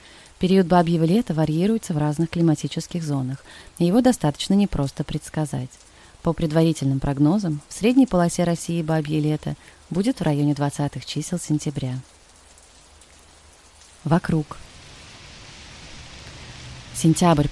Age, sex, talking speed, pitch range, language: 30-49, female, 105 wpm, 140-170 Hz, Russian